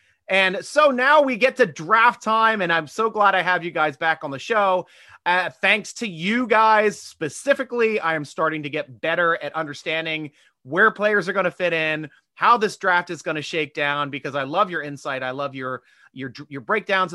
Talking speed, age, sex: 210 wpm, 30-49, male